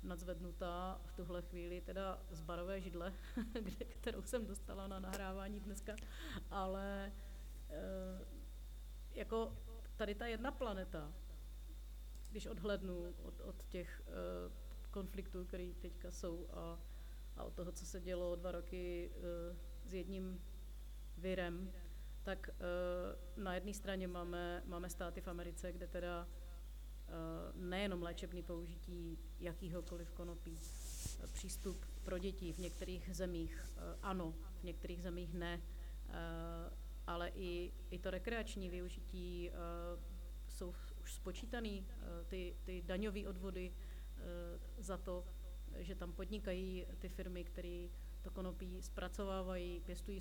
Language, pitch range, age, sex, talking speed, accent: Czech, 170-190 Hz, 30-49, female, 115 wpm, native